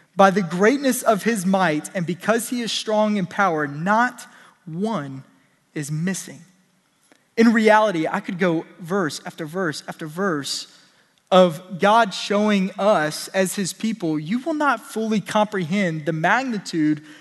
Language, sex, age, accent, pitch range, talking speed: English, male, 20-39, American, 180-225 Hz, 145 wpm